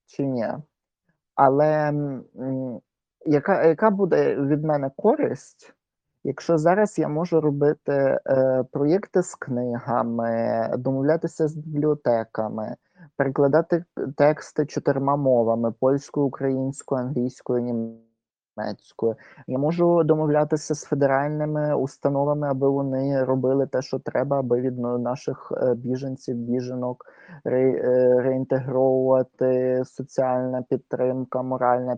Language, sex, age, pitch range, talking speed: Ukrainian, male, 30-49, 125-155 Hz, 95 wpm